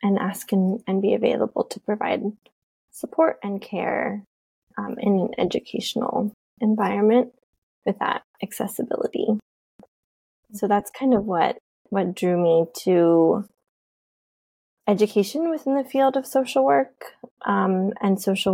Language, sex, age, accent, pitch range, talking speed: English, female, 20-39, American, 190-230 Hz, 125 wpm